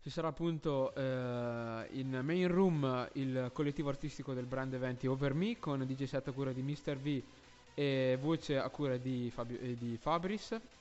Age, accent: 20-39, native